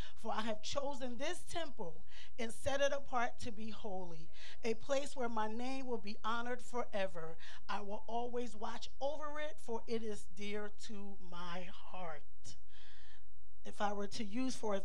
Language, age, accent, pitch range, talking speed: English, 30-49, American, 185-220 Hz, 170 wpm